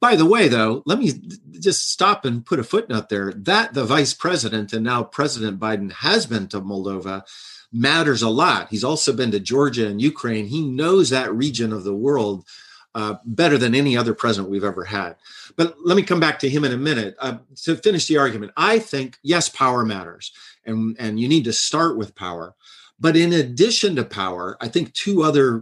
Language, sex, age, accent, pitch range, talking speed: English, male, 40-59, American, 110-145 Hz, 205 wpm